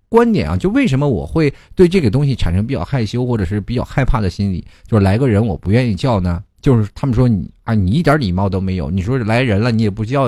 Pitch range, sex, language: 95-130 Hz, male, Chinese